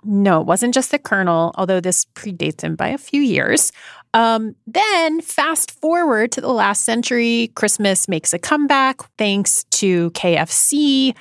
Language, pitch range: English, 190-270 Hz